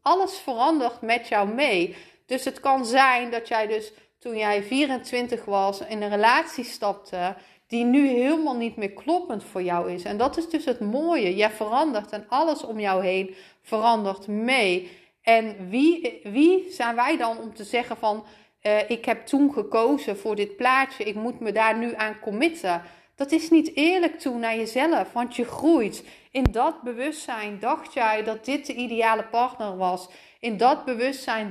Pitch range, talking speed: 210-265 Hz, 175 wpm